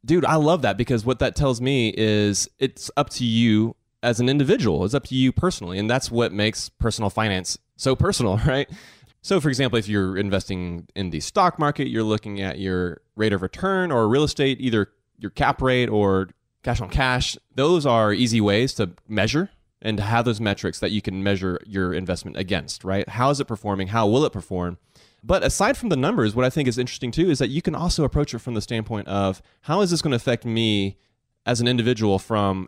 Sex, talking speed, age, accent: male, 220 wpm, 30-49, American